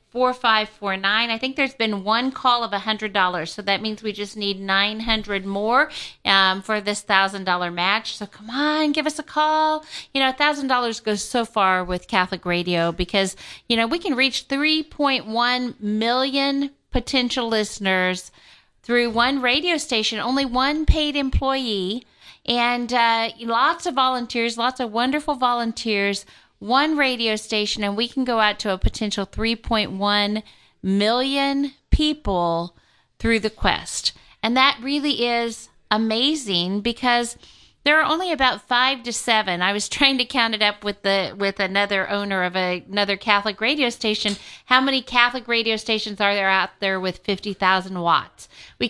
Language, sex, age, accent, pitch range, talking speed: English, female, 40-59, American, 205-260 Hz, 170 wpm